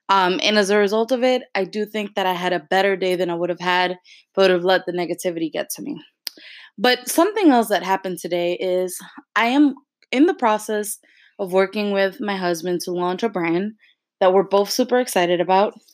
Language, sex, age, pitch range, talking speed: English, female, 20-39, 185-230 Hz, 220 wpm